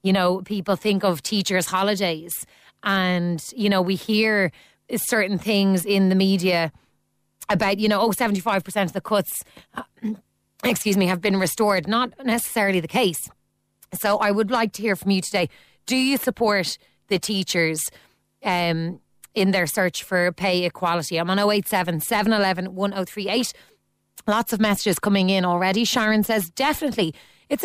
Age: 30-49